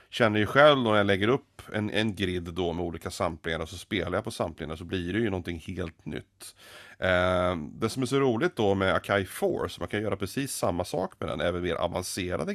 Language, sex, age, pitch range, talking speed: Swedish, male, 30-49, 90-110 Hz, 235 wpm